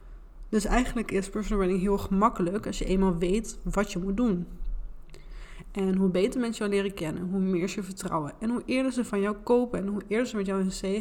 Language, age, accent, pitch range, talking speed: Dutch, 20-39, Dutch, 185-205 Hz, 230 wpm